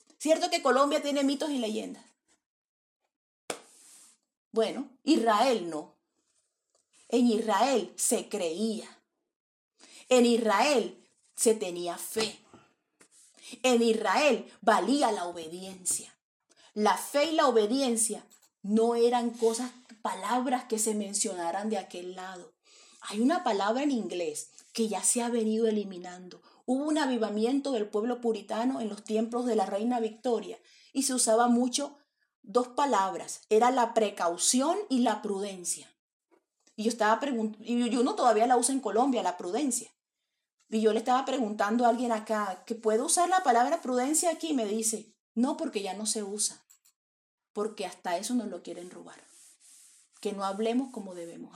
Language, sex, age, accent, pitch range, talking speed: English, female, 30-49, Venezuelan, 210-255 Hz, 145 wpm